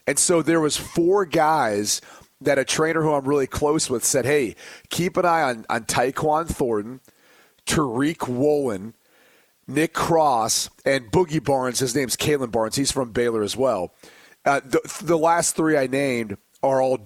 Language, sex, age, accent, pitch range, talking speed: English, male, 30-49, American, 135-175 Hz, 170 wpm